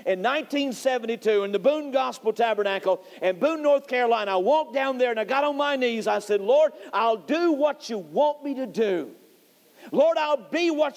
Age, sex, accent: 50-69, male, American